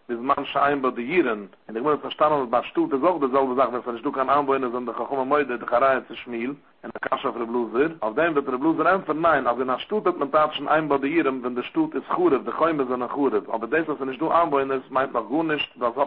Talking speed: 100 wpm